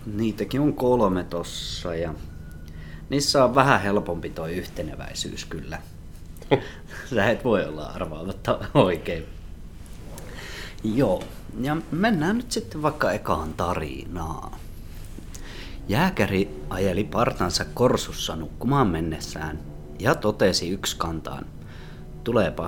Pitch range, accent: 80-110 Hz, native